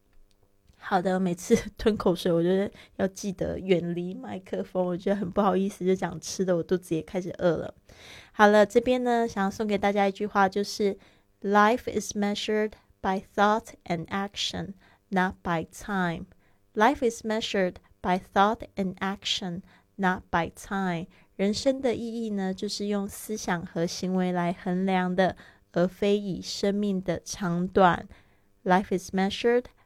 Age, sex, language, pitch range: 20-39, female, Chinese, 180-210 Hz